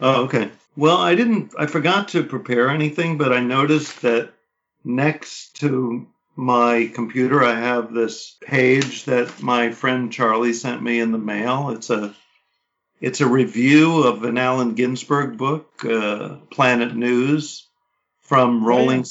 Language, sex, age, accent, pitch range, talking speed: English, male, 50-69, American, 120-145 Hz, 145 wpm